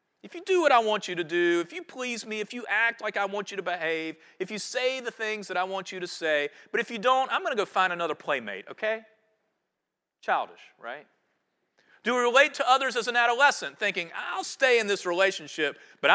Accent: American